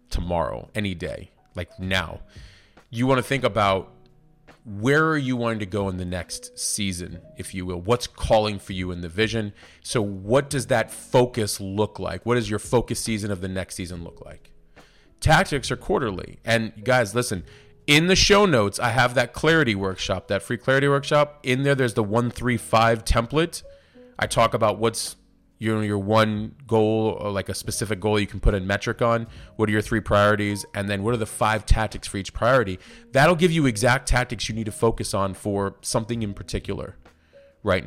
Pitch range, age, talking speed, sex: 95-125 Hz, 30-49, 200 wpm, male